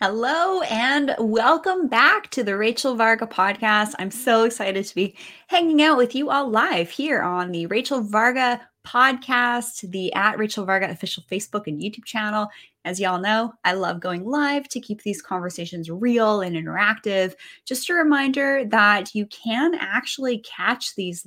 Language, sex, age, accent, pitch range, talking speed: English, female, 20-39, American, 195-255 Hz, 165 wpm